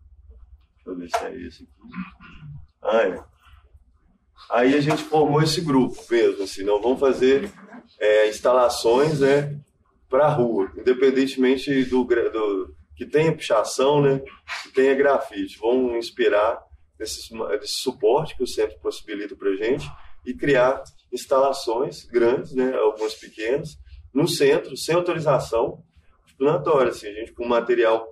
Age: 20-39